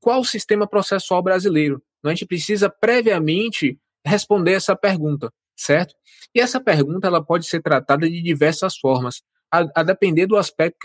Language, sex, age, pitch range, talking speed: Portuguese, male, 20-39, 145-205 Hz, 160 wpm